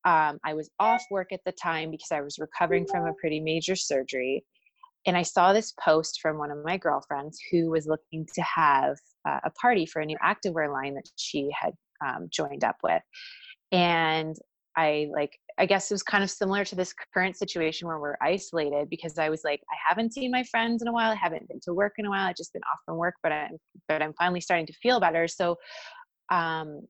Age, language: 20-39, English